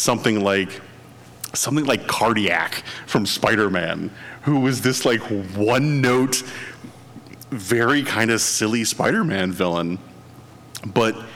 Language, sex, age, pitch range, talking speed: English, male, 30-49, 115-165 Hz, 100 wpm